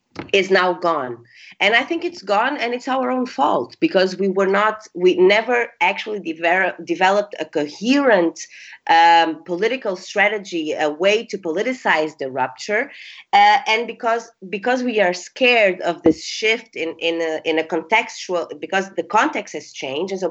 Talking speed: 165 wpm